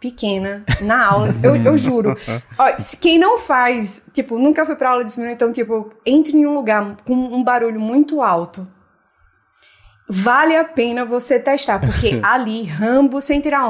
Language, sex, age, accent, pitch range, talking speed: Portuguese, female, 20-39, Brazilian, 220-285 Hz, 165 wpm